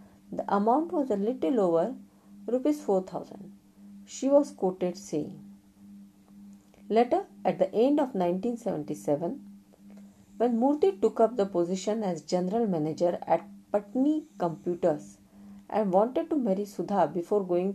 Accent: native